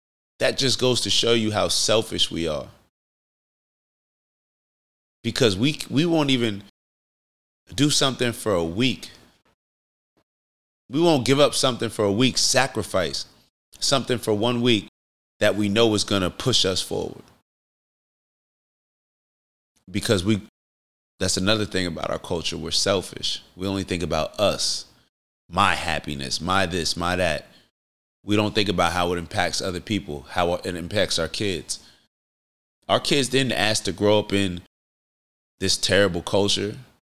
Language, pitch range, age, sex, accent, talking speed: English, 90-120 Hz, 30-49, male, American, 140 wpm